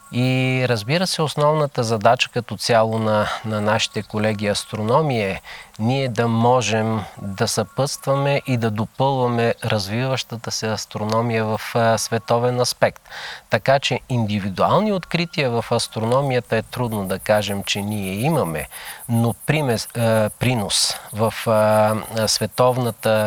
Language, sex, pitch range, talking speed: Bulgarian, male, 105-125 Hz, 115 wpm